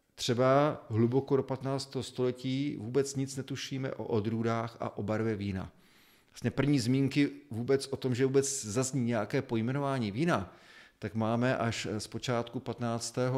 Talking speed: 140 wpm